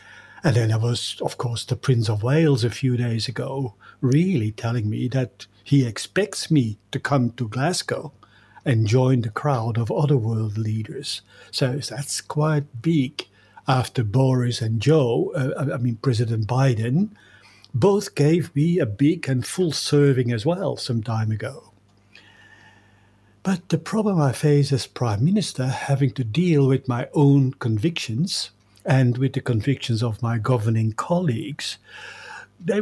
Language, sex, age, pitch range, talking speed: English, male, 60-79, 115-150 Hz, 150 wpm